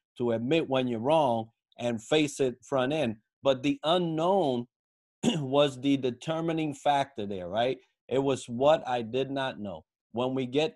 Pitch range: 120-145 Hz